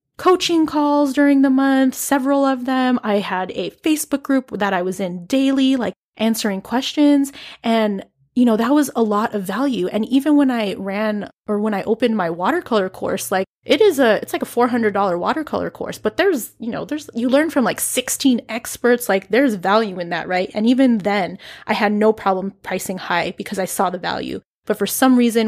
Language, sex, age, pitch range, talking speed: English, female, 20-39, 195-245 Hz, 205 wpm